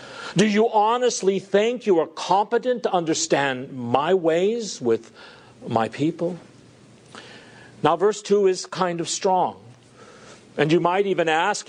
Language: English